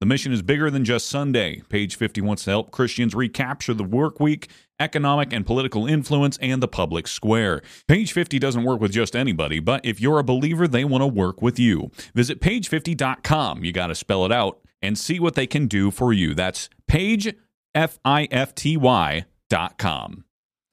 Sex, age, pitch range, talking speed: male, 30-49, 105-130 Hz, 175 wpm